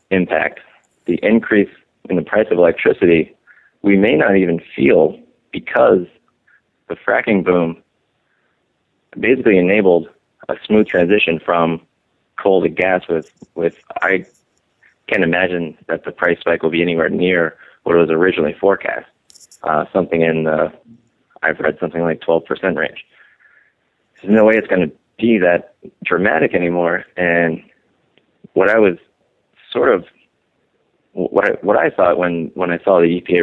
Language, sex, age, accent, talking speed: English, male, 30-49, American, 145 wpm